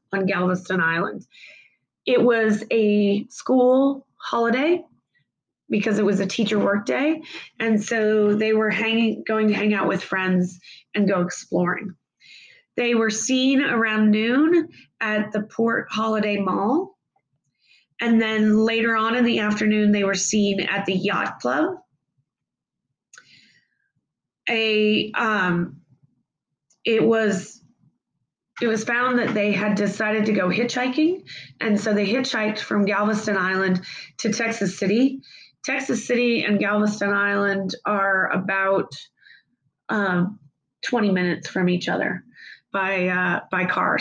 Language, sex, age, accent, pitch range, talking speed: English, female, 30-49, American, 195-230 Hz, 130 wpm